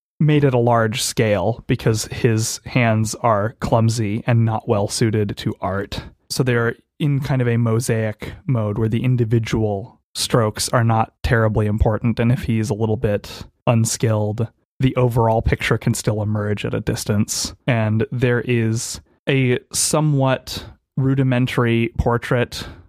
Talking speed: 140 wpm